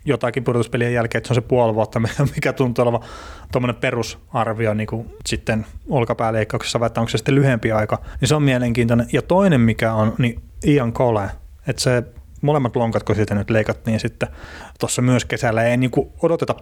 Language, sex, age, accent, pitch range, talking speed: Finnish, male, 30-49, native, 110-130 Hz, 180 wpm